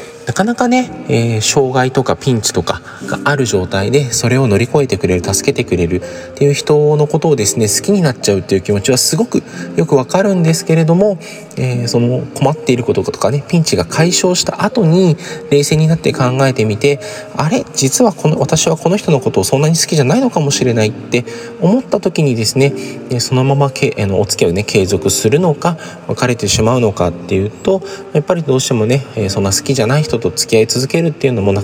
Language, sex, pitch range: Japanese, male, 105-160 Hz